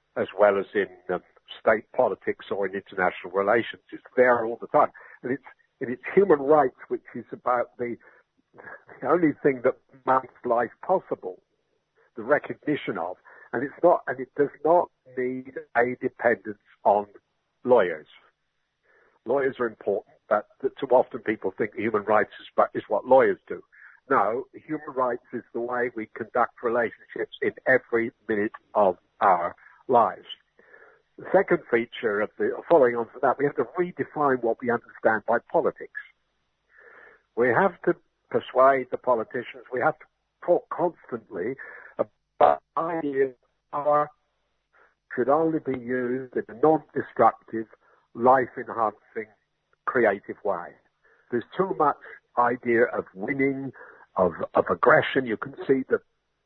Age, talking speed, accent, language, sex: 60-79, 140 wpm, British, English, male